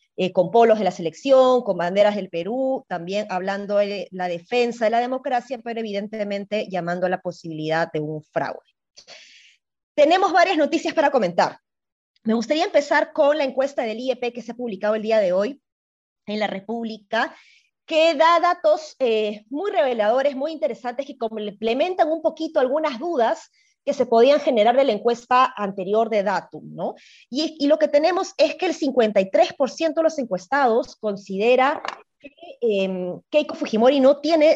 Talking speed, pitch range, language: 165 wpm, 210-295 Hz, Spanish